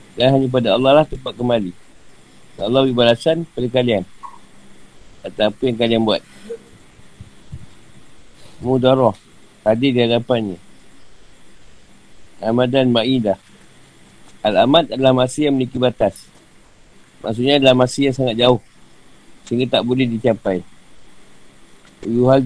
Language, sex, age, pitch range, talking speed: Malay, male, 50-69, 115-145 Hz, 105 wpm